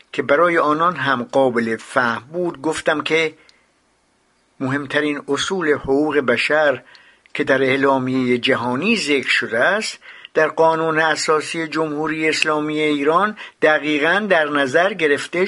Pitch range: 130-160 Hz